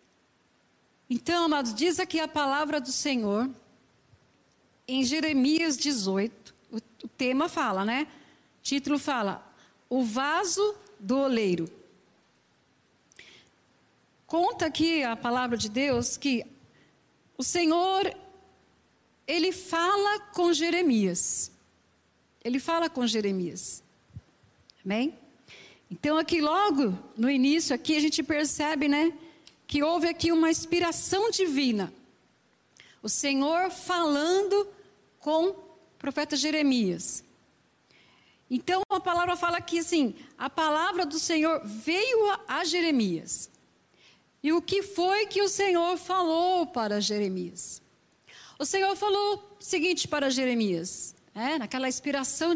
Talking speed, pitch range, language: 110 wpm, 250-345 Hz, Portuguese